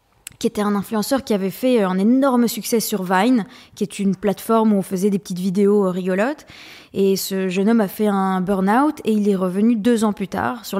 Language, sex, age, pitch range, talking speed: French, female, 20-39, 200-235 Hz, 220 wpm